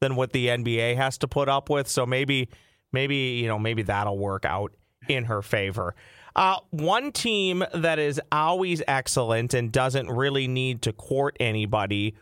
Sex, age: male, 30-49